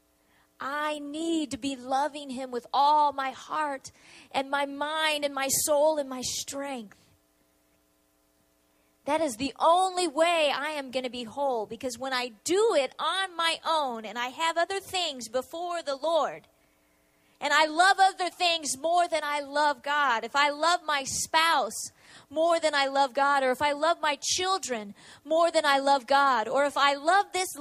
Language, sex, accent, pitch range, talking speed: English, female, American, 200-320 Hz, 180 wpm